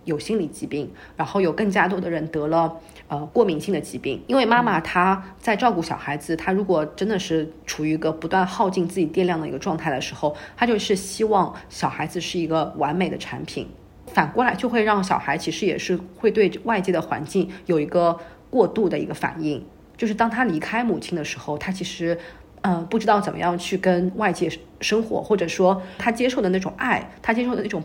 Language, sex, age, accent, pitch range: Chinese, female, 50-69, native, 160-210 Hz